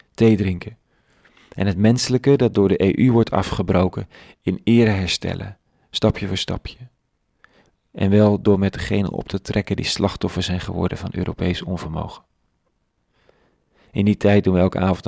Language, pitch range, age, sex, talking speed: Dutch, 90-110 Hz, 40-59, male, 155 wpm